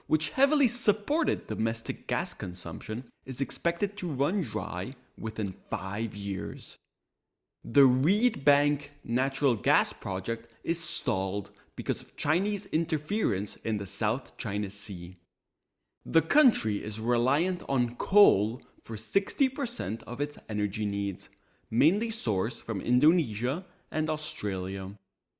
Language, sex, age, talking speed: English, male, 30-49, 115 wpm